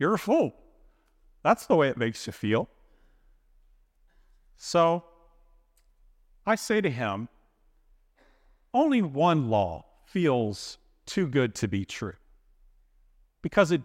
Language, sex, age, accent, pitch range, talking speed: English, male, 40-59, American, 115-190 Hz, 115 wpm